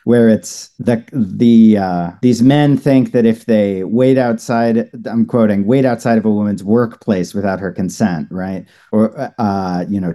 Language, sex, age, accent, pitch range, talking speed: English, male, 40-59, American, 100-125 Hz, 170 wpm